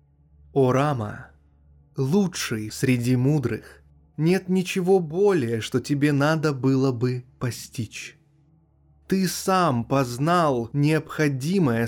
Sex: male